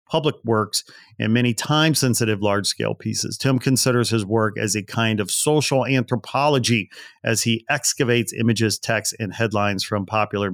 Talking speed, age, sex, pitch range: 150 wpm, 40-59, male, 110-130 Hz